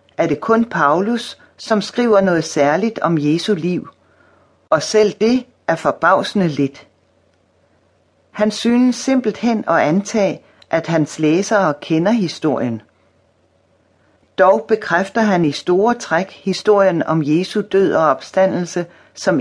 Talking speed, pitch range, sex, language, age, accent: 125 wpm, 140-210 Hz, female, Danish, 40-59, native